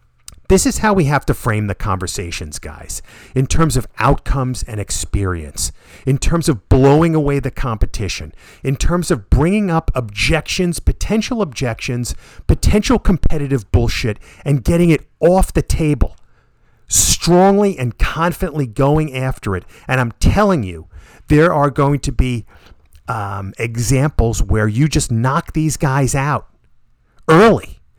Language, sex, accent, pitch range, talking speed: English, male, American, 105-160 Hz, 140 wpm